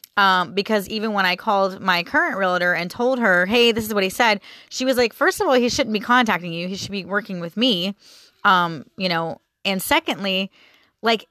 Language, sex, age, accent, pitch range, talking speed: English, female, 30-49, American, 185-250 Hz, 220 wpm